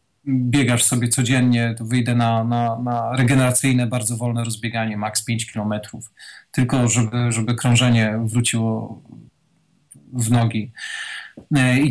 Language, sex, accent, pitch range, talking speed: Polish, male, native, 120-155 Hz, 115 wpm